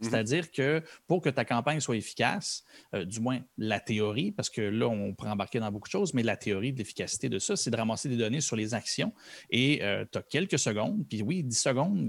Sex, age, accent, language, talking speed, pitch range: male, 30-49, Canadian, French, 240 wpm, 110-145 Hz